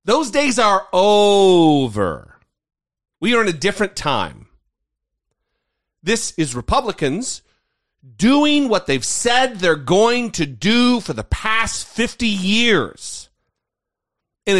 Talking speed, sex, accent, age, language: 110 wpm, male, American, 40-59, English